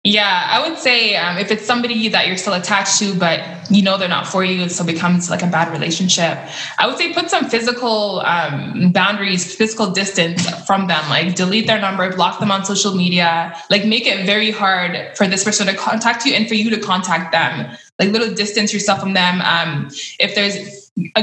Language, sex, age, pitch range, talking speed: English, female, 20-39, 185-220 Hz, 210 wpm